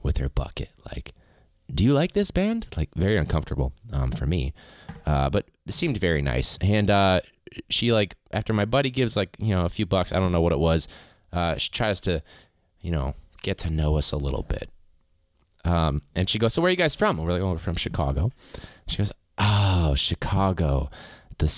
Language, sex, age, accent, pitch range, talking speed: English, male, 20-39, American, 80-105 Hz, 210 wpm